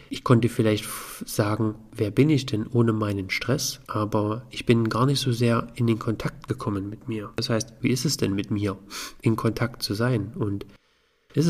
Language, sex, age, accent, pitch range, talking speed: German, male, 40-59, German, 110-135 Hz, 200 wpm